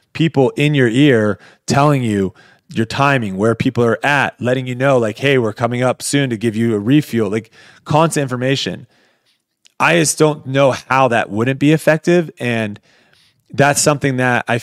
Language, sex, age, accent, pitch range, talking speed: English, male, 30-49, American, 115-140 Hz, 175 wpm